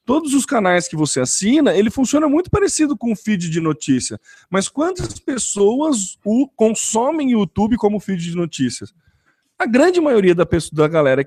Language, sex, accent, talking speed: Portuguese, male, Brazilian, 170 wpm